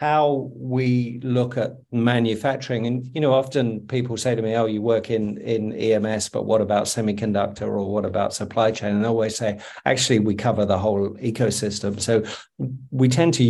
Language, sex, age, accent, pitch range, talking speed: English, male, 50-69, British, 105-120 Hz, 180 wpm